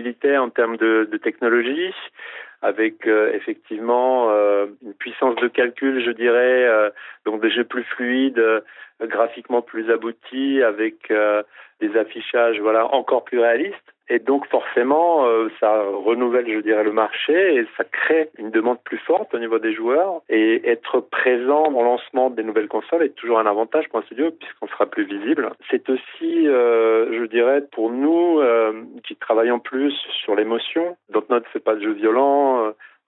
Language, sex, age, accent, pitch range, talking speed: French, male, 40-59, French, 110-155 Hz, 170 wpm